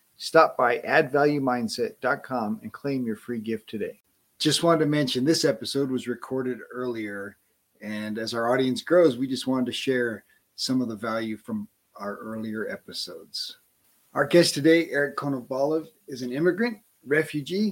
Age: 40-59